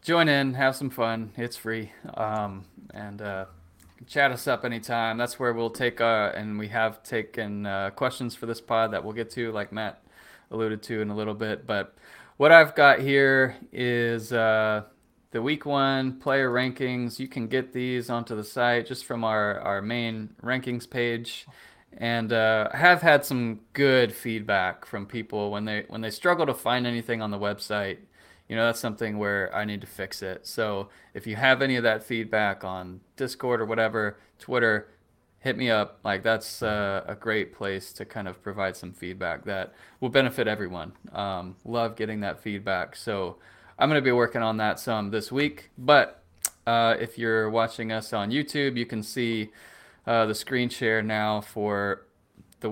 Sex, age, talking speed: male, 20-39, 185 wpm